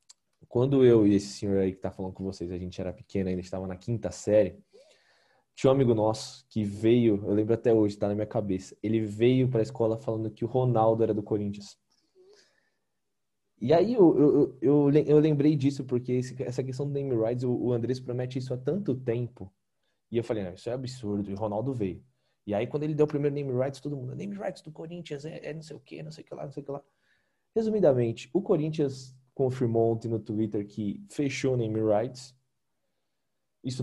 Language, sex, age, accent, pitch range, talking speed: Portuguese, male, 20-39, Brazilian, 100-130 Hz, 220 wpm